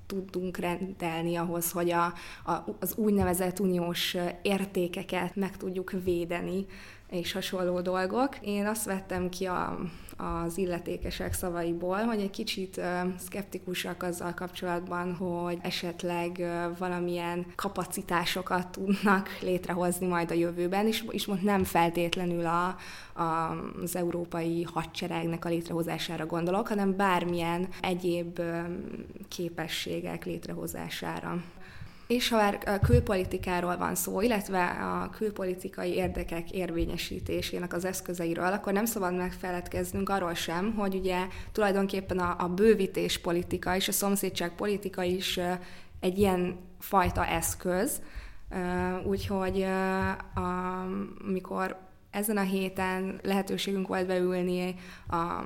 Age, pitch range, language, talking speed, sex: 20-39, 175-190 Hz, Hungarian, 110 wpm, female